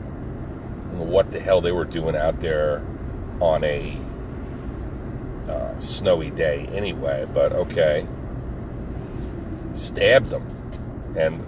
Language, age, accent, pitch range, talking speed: English, 40-59, American, 85-110 Hz, 100 wpm